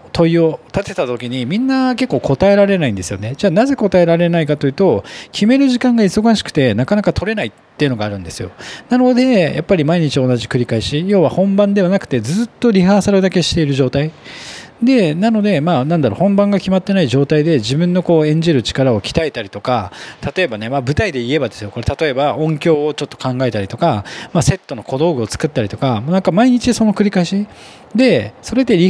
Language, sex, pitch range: Japanese, male, 130-205 Hz